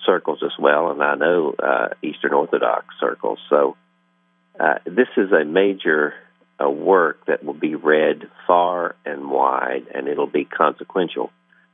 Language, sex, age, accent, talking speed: English, male, 50-69, American, 150 wpm